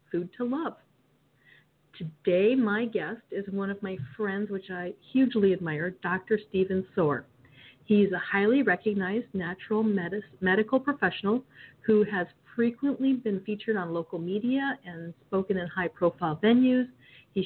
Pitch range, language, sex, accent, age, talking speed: 180-225 Hz, English, female, American, 50-69, 135 wpm